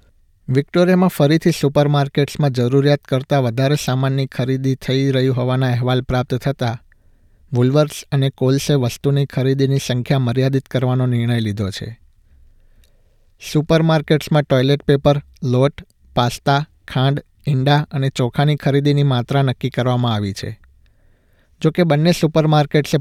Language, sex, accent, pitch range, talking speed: Gujarati, male, native, 120-145 Hz, 125 wpm